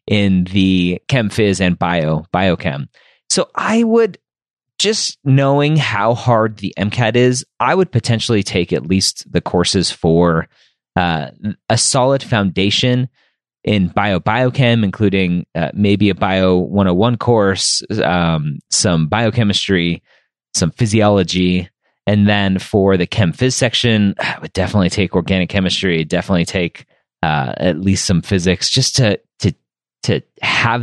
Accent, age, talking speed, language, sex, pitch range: American, 30-49, 135 wpm, English, male, 95-130 Hz